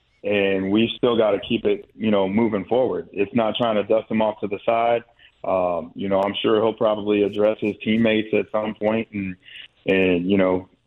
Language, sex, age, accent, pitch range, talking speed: English, male, 30-49, American, 100-115 Hz, 210 wpm